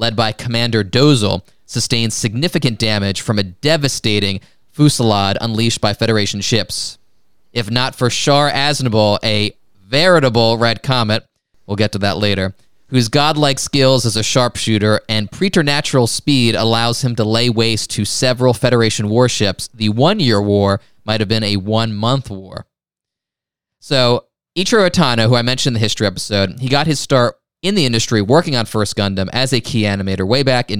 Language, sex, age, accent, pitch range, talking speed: English, male, 20-39, American, 105-130 Hz, 170 wpm